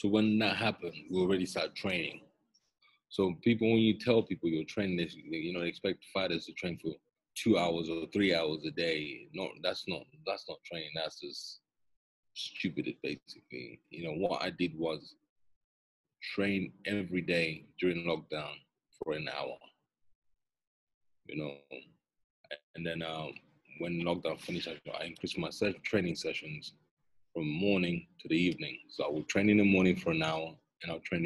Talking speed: 165 wpm